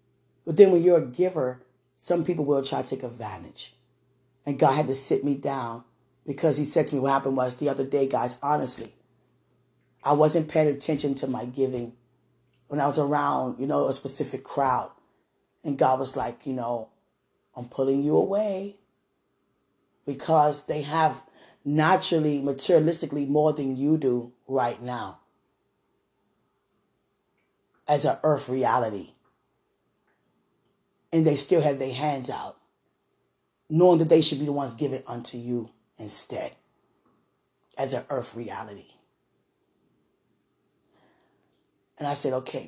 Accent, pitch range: American, 130-160 Hz